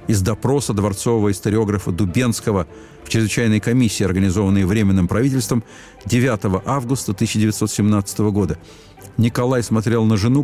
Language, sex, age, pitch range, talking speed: Russian, male, 50-69, 100-130 Hz, 110 wpm